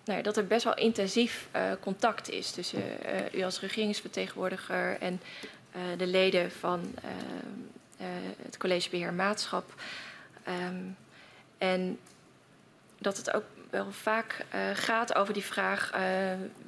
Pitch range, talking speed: 185-205 Hz, 135 wpm